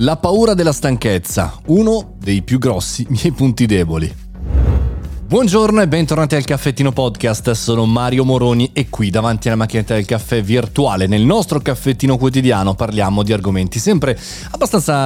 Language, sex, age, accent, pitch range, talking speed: Italian, male, 30-49, native, 105-165 Hz, 145 wpm